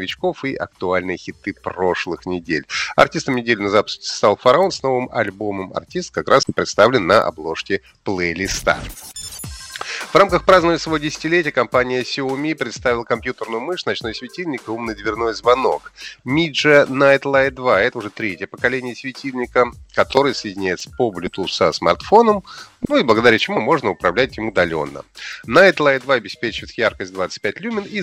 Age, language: 30-49, Russian